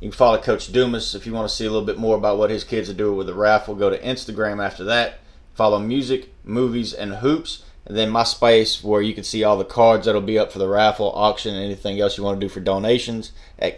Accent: American